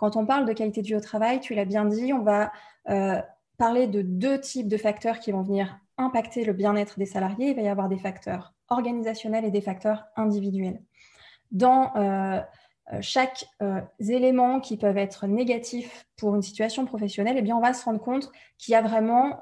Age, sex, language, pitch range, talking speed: 20-39, female, French, 205-245 Hz, 195 wpm